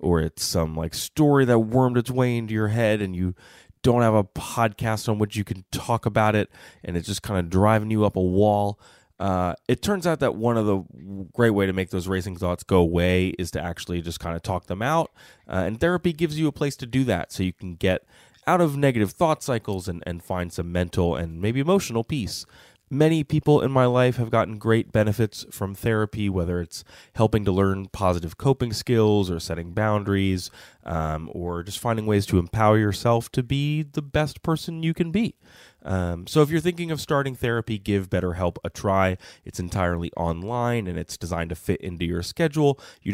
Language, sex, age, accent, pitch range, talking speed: English, male, 20-39, American, 90-125 Hz, 210 wpm